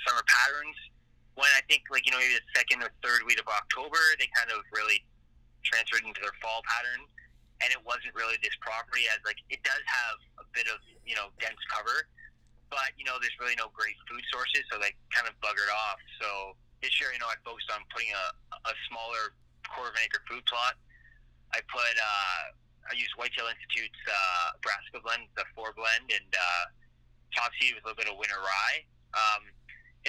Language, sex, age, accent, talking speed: English, male, 20-39, American, 200 wpm